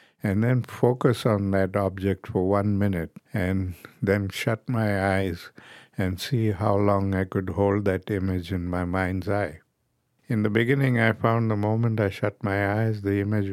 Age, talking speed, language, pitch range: 50-69, 180 wpm, English, 95-110 Hz